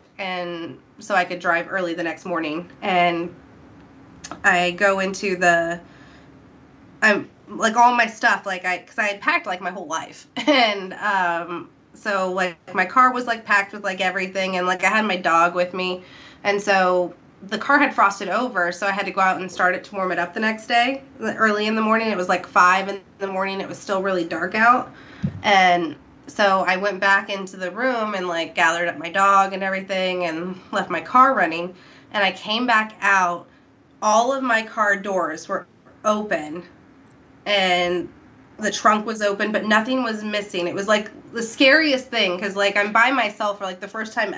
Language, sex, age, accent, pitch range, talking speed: English, female, 20-39, American, 180-220 Hz, 200 wpm